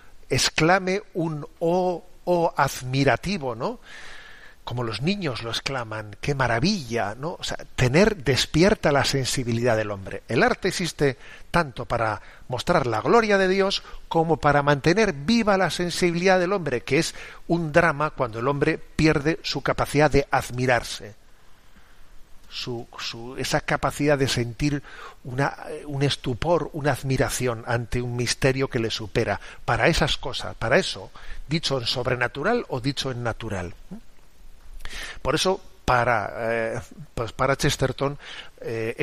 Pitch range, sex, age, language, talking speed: 120-160 Hz, male, 40-59, Spanish, 135 wpm